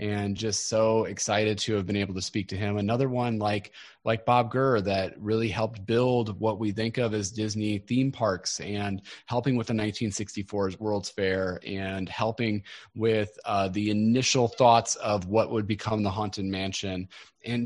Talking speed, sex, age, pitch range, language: 175 wpm, male, 30-49, 105-125 Hz, English